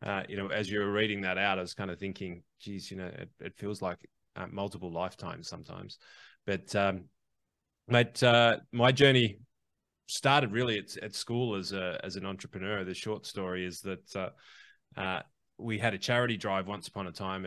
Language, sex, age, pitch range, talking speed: English, male, 20-39, 95-110 Hz, 190 wpm